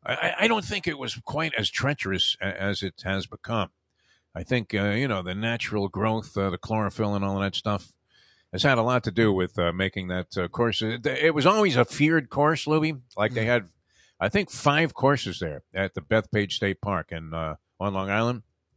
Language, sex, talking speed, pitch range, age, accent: English, male, 215 wpm, 100-140 Hz, 50-69, American